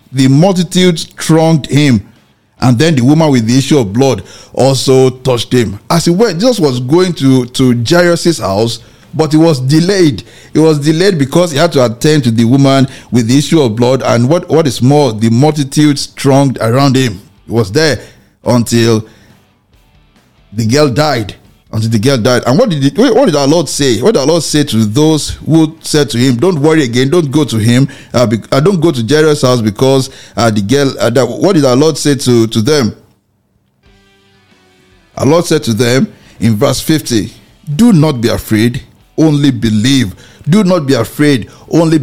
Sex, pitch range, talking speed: male, 115-155 Hz, 190 wpm